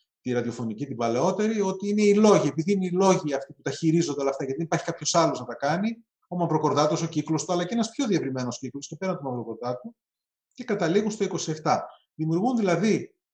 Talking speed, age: 205 wpm, 30-49